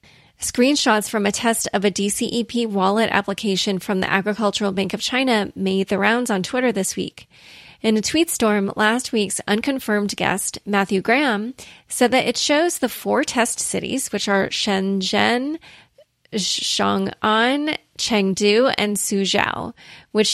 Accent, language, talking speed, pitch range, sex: American, English, 140 wpm, 200-240 Hz, female